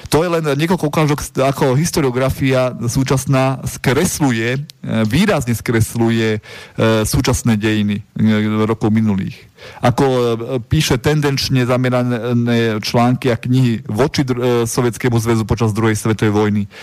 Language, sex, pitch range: Slovak, male, 115-140 Hz